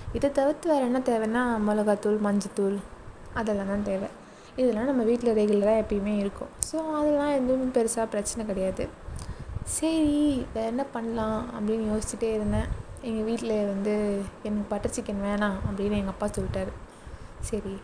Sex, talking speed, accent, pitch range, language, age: female, 140 wpm, native, 205-250 Hz, Tamil, 20-39